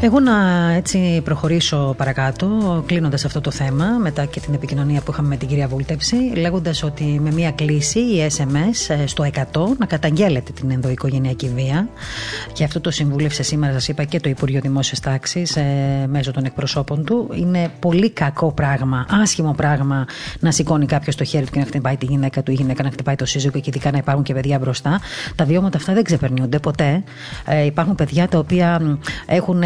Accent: native